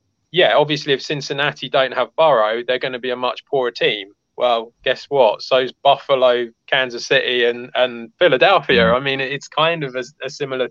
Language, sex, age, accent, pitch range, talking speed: English, male, 20-39, British, 120-145 Hz, 190 wpm